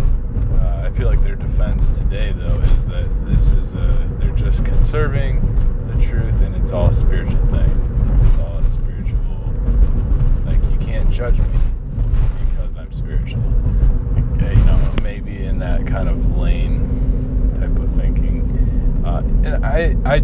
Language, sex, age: English, male, 20-39